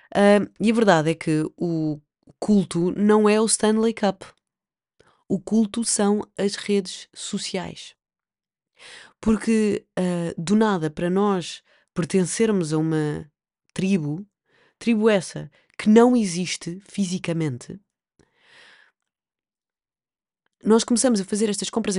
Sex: female